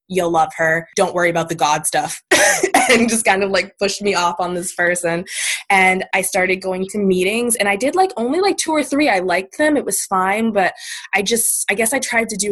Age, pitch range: 20-39, 180-235 Hz